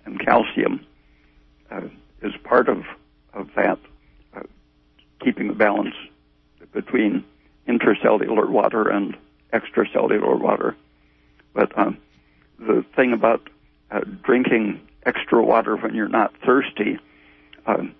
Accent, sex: American, male